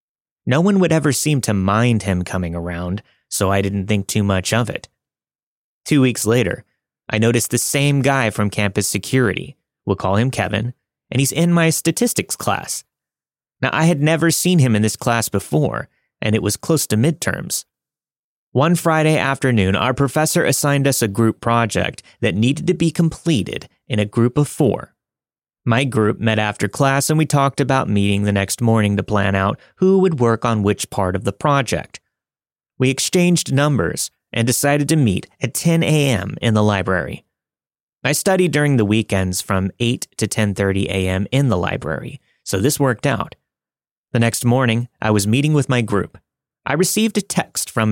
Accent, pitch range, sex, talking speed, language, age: American, 105-145 Hz, male, 180 wpm, English, 30-49